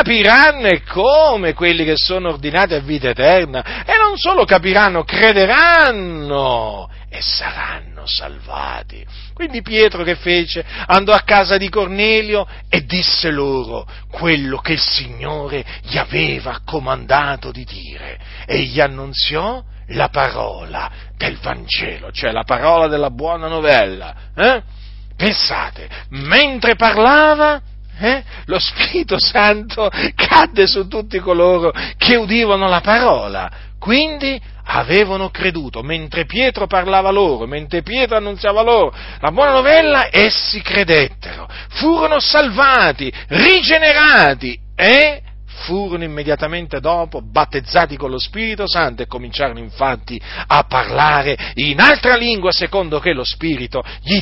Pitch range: 150-230 Hz